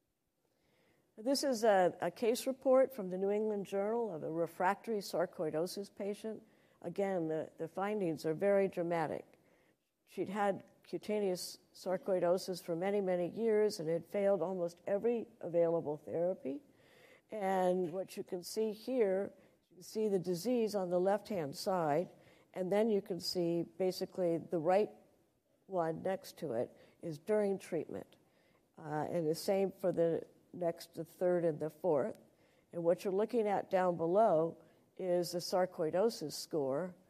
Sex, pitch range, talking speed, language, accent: female, 170-195 Hz, 145 wpm, English, American